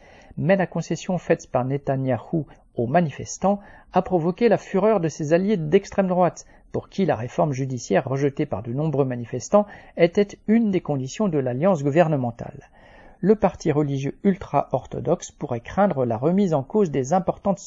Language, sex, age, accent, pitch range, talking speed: French, male, 50-69, French, 130-180 Hz, 155 wpm